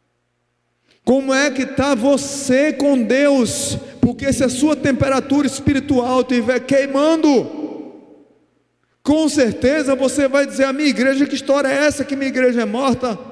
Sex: male